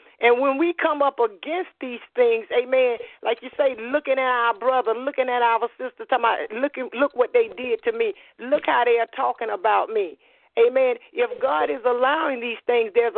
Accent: American